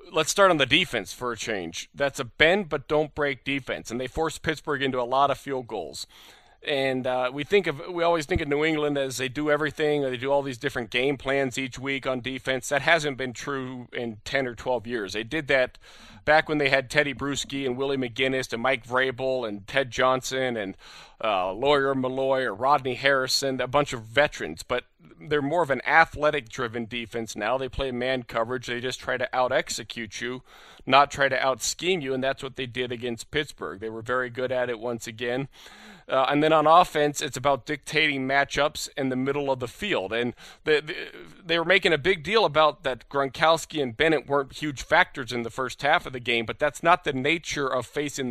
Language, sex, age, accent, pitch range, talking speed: English, male, 40-59, American, 125-150 Hz, 215 wpm